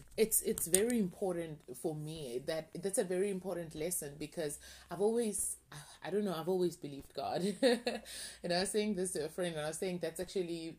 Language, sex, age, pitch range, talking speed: English, female, 20-39, 160-190 Hz, 200 wpm